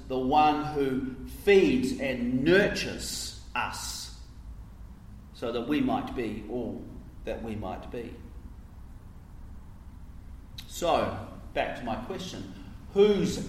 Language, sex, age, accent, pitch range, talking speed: English, male, 40-59, Australian, 95-145 Hz, 100 wpm